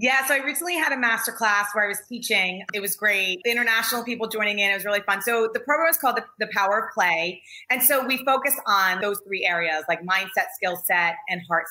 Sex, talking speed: female, 235 wpm